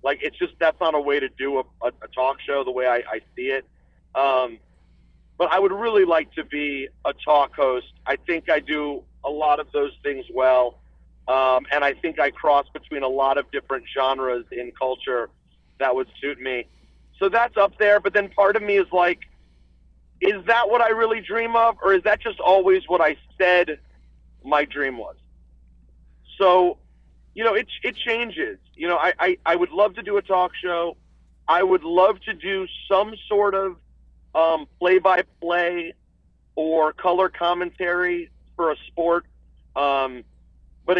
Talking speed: 180 wpm